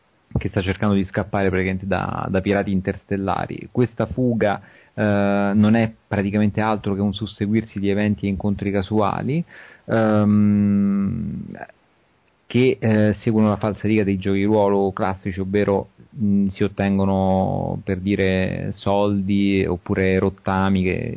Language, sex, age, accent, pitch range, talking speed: Italian, male, 40-59, native, 100-110 Hz, 125 wpm